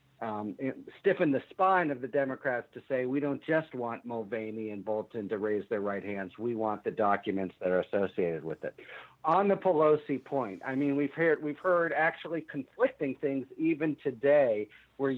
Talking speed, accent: 180 wpm, American